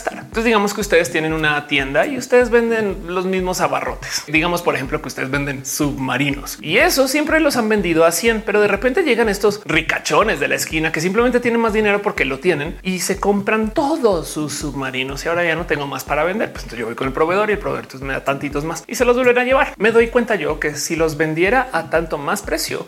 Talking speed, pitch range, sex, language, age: 235 wpm, 150-210 Hz, male, Spanish, 30-49